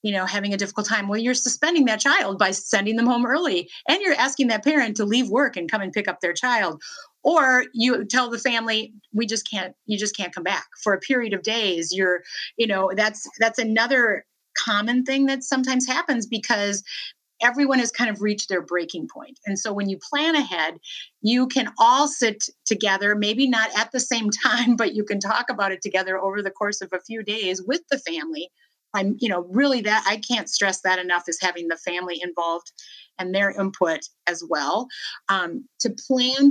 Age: 30-49